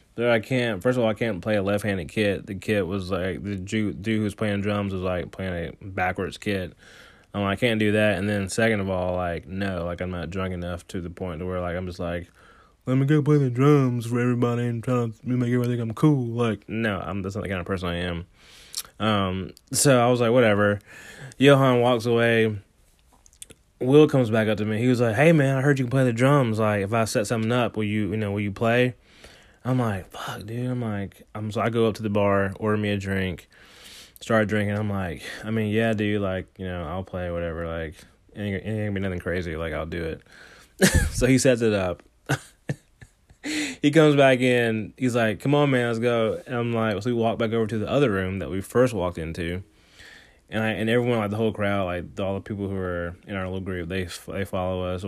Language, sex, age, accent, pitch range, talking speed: English, male, 20-39, American, 95-120 Hz, 240 wpm